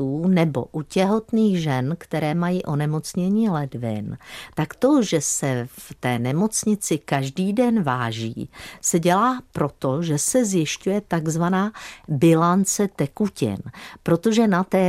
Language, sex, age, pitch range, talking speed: Czech, female, 50-69, 145-190 Hz, 120 wpm